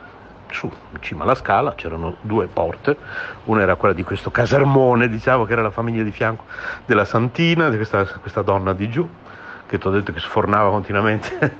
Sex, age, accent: male, 60-79, native